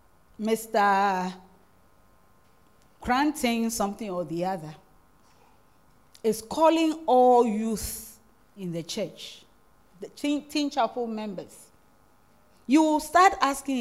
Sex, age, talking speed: female, 40-59, 95 wpm